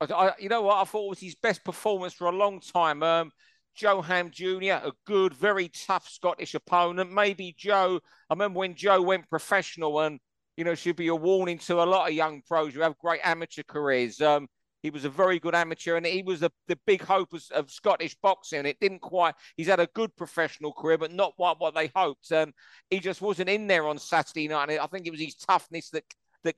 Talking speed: 235 wpm